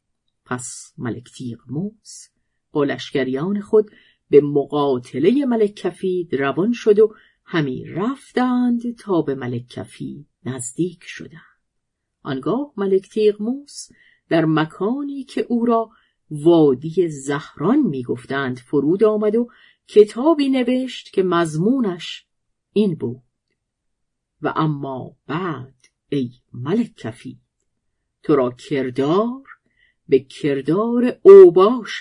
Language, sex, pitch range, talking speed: Persian, female, 140-215 Hz, 95 wpm